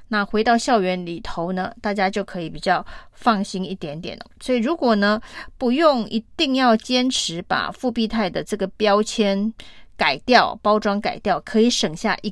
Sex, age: female, 30-49